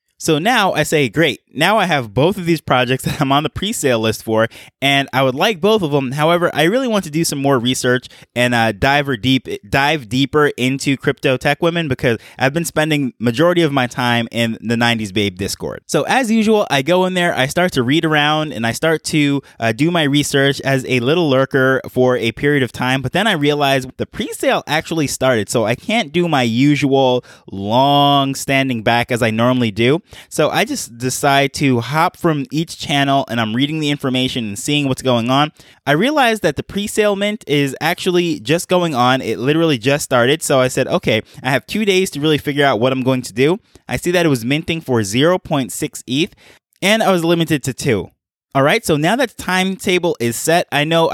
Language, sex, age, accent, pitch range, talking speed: English, male, 20-39, American, 130-165 Hz, 220 wpm